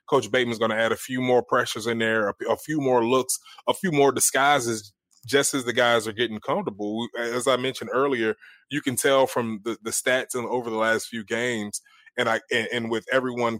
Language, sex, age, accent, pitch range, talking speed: English, male, 20-39, American, 110-130 Hz, 215 wpm